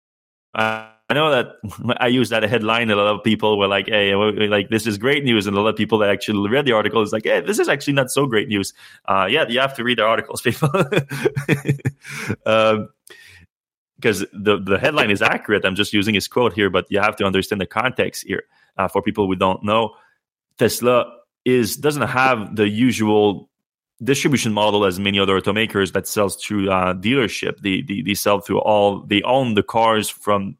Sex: male